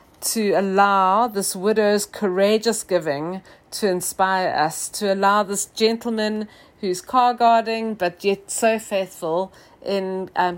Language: English